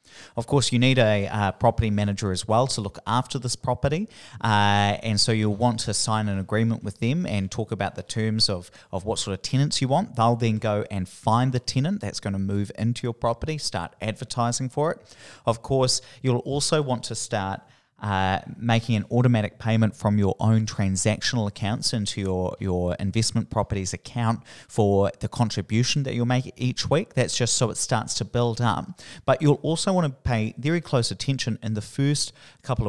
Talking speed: 200 wpm